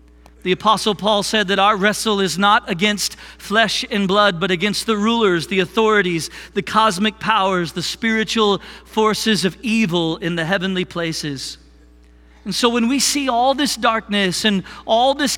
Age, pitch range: 40-59, 175-235 Hz